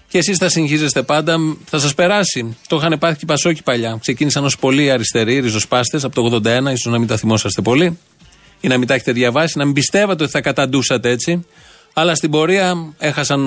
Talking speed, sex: 205 wpm, male